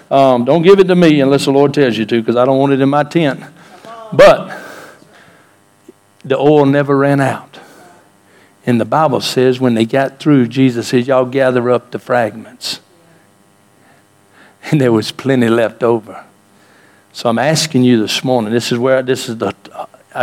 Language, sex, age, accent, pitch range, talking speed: English, male, 60-79, American, 105-140 Hz, 175 wpm